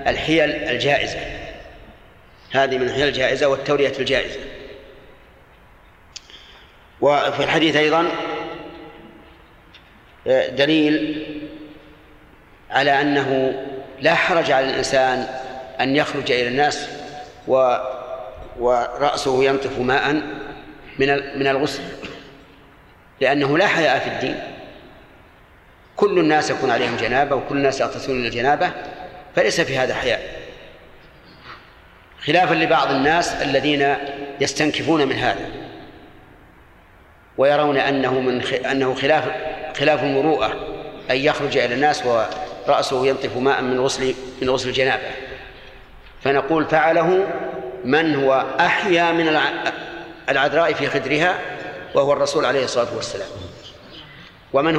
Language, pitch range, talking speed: Arabic, 130-155 Hz, 95 wpm